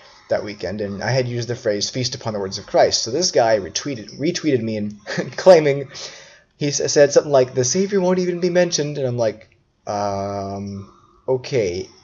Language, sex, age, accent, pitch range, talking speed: English, male, 20-39, American, 105-130 Hz, 185 wpm